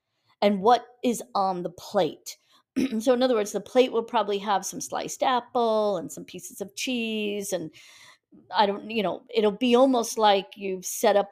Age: 40-59